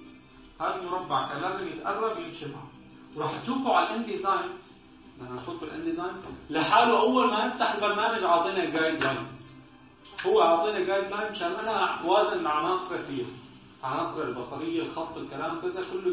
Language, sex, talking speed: Arabic, male, 135 wpm